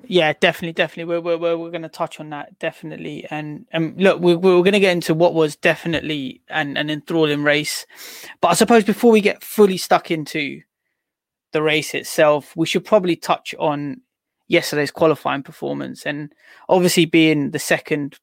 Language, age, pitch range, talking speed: English, 20-39, 150-195 Hz, 185 wpm